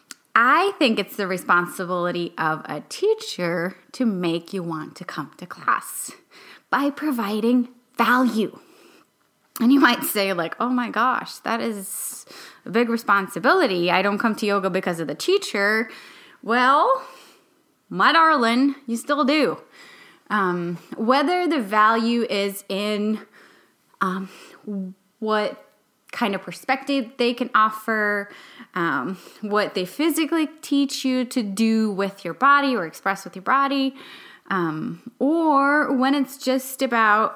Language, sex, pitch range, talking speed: English, female, 195-280 Hz, 135 wpm